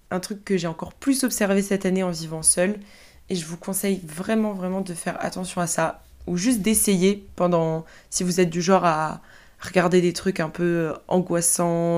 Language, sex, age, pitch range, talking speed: French, female, 20-39, 170-195 Hz, 195 wpm